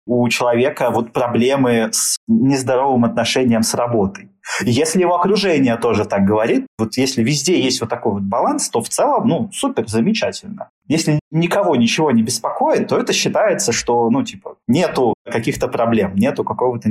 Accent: native